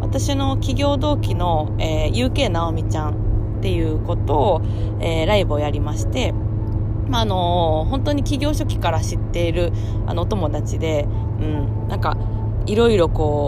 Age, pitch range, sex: 20-39, 105-110 Hz, female